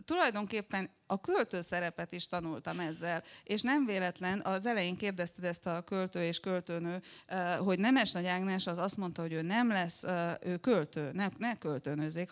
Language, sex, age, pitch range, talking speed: Hungarian, female, 30-49, 175-215 Hz, 160 wpm